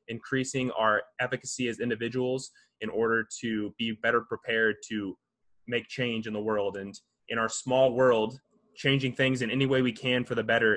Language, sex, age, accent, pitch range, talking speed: English, male, 20-39, American, 110-125 Hz, 180 wpm